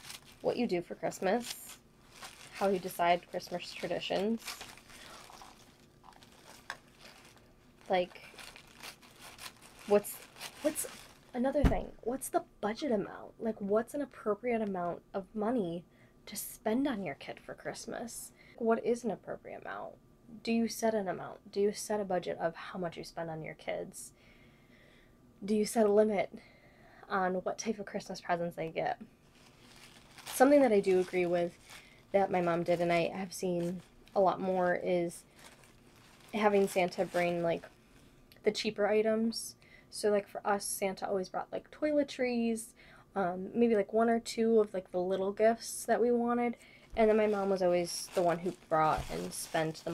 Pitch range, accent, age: 175-220 Hz, American, 10-29